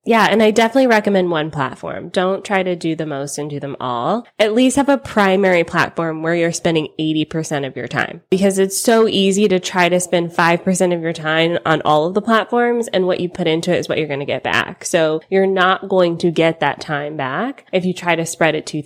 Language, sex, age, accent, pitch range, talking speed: English, female, 20-39, American, 165-220 Hz, 240 wpm